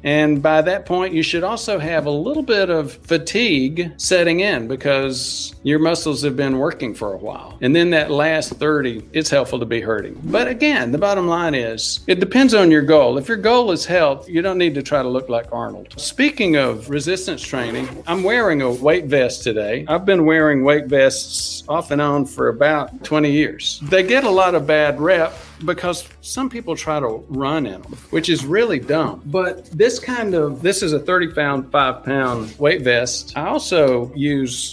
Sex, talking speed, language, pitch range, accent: male, 200 wpm, English, 130-170 Hz, American